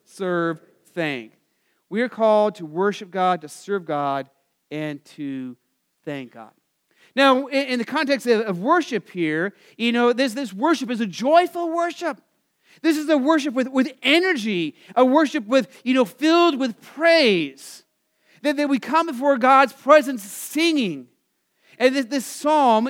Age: 40-59